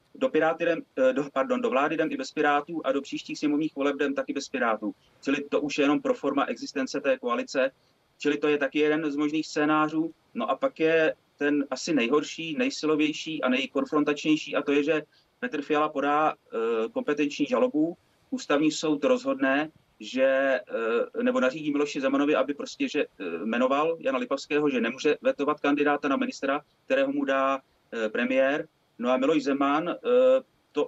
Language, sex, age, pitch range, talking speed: Czech, male, 30-49, 140-225 Hz, 165 wpm